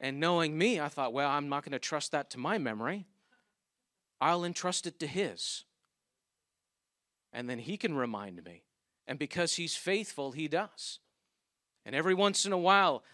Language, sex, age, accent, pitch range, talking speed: English, male, 40-59, American, 140-190 Hz, 175 wpm